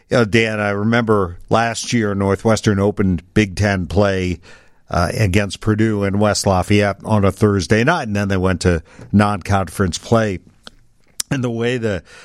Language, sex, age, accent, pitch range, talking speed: English, male, 50-69, American, 95-120 Hz, 155 wpm